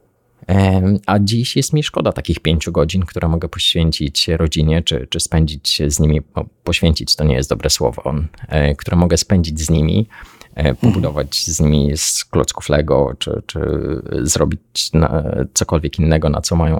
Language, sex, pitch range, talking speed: Polish, male, 80-100 Hz, 150 wpm